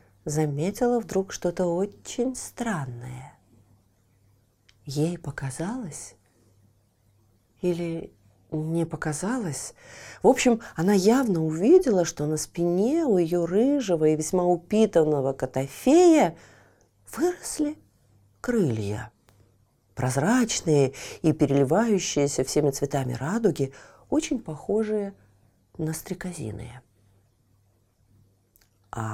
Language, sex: Russian, female